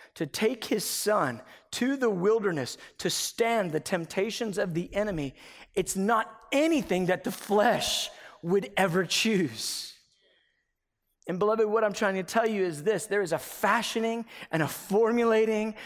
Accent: American